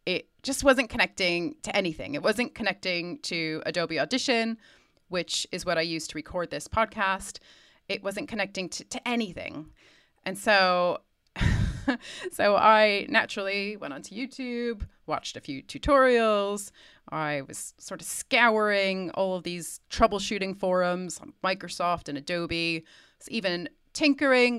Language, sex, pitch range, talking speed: English, female, 165-230 Hz, 135 wpm